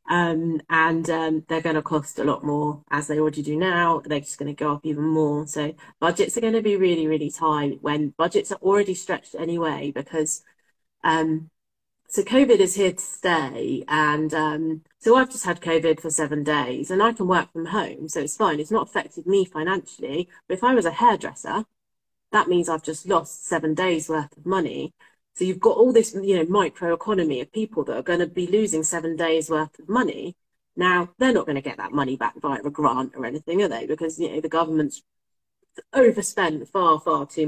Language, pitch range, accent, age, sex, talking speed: English, 150-185 Hz, British, 30-49, female, 215 wpm